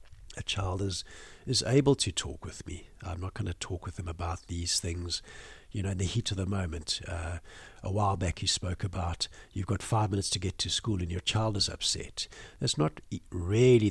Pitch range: 90-115 Hz